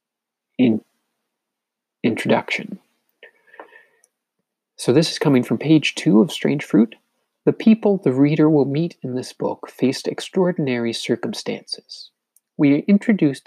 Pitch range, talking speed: 120-165 Hz, 115 wpm